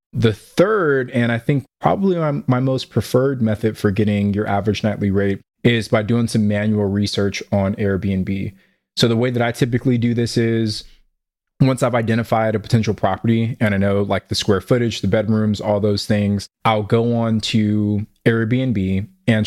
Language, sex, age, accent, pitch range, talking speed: English, male, 20-39, American, 100-120 Hz, 180 wpm